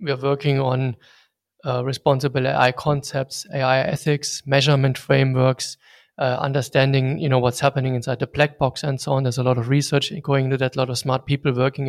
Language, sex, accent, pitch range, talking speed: English, male, German, 130-145 Hz, 195 wpm